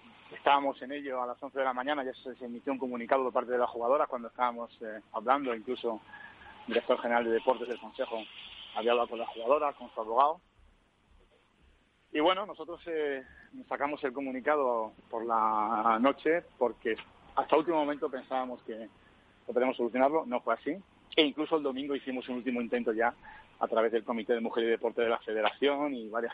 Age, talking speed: 40-59, 185 wpm